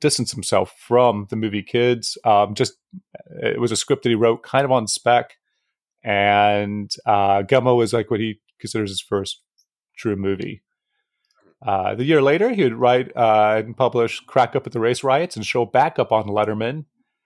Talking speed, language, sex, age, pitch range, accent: 180 wpm, English, male, 30-49, 110-145 Hz, American